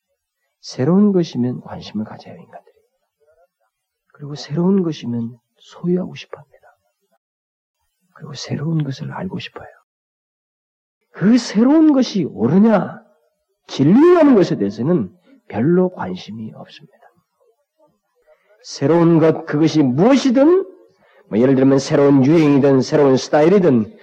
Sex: male